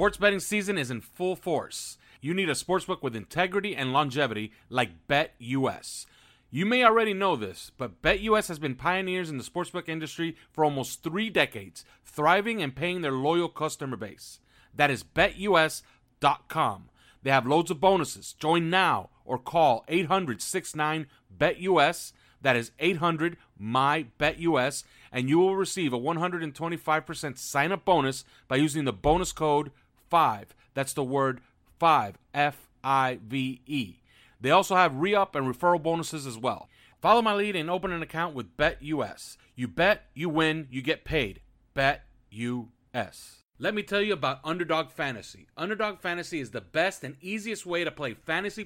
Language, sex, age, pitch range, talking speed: English, male, 40-59, 130-180 Hz, 150 wpm